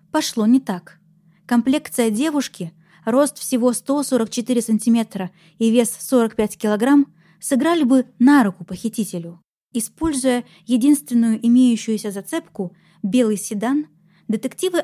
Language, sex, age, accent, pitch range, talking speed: Russian, female, 20-39, native, 205-265 Hz, 100 wpm